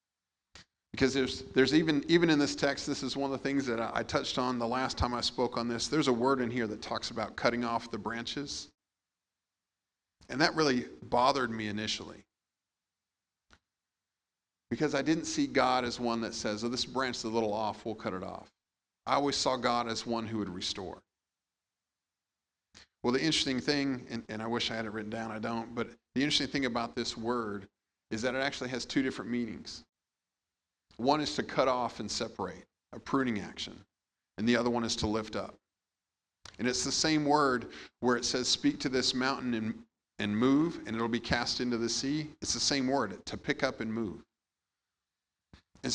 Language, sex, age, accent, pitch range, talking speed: English, male, 40-59, American, 110-135 Hz, 200 wpm